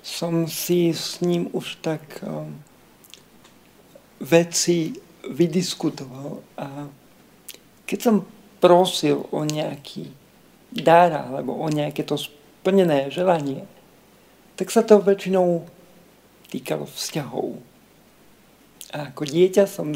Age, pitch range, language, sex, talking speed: 50-69, 155-195 Hz, Slovak, male, 95 wpm